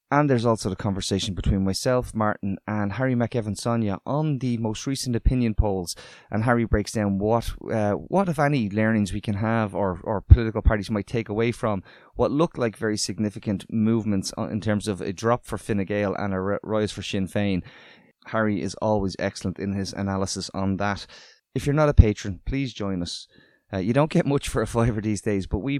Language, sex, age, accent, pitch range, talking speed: English, male, 20-39, Irish, 100-120 Hz, 200 wpm